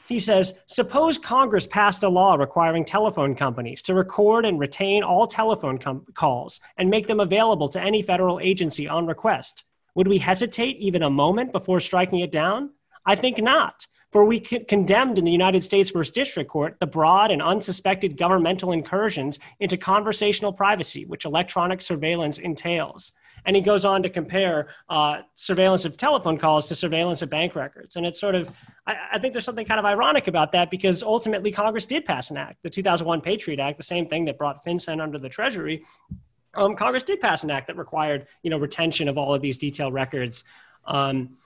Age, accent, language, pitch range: 30-49, American, English, 155-205 Hz